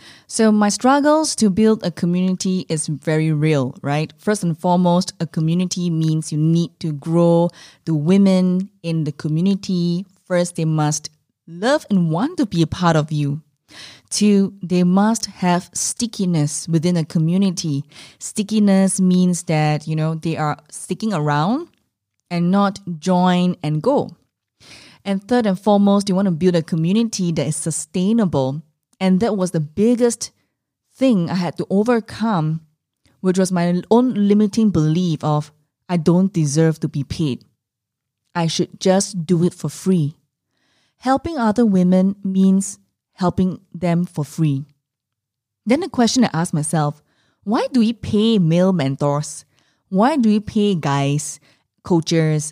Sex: female